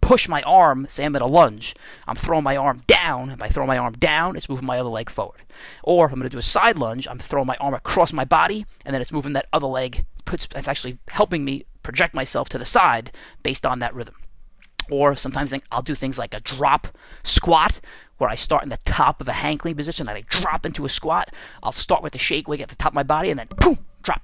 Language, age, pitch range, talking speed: English, 30-49, 125-155 Hz, 250 wpm